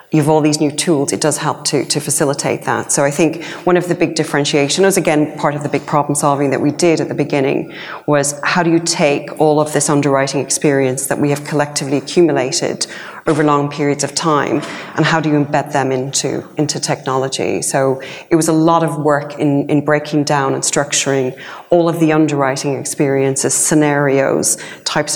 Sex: female